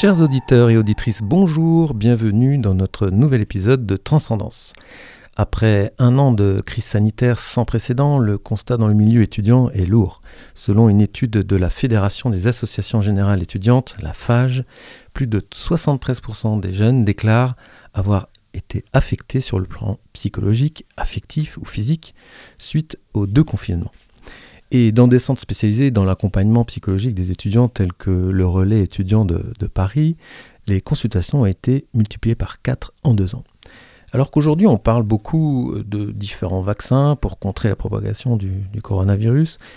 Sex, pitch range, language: male, 100-130 Hz, French